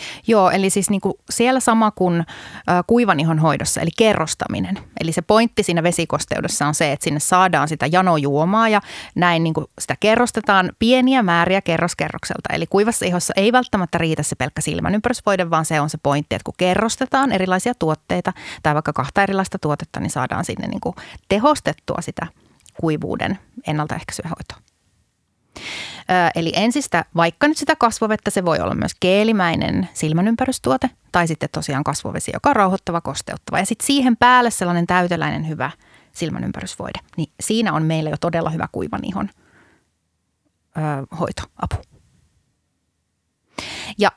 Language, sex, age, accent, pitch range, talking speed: Finnish, female, 30-49, native, 155-220 Hz, 145 wpm